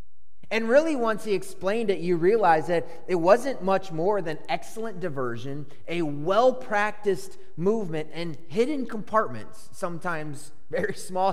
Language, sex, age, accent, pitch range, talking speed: English, male, 30-49, American, 130-195 Hz, 130 wpm